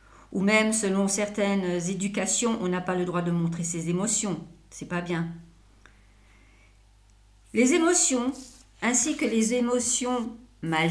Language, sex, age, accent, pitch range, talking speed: French, female, 40-59, French, 170-235 Hz, 130 wpm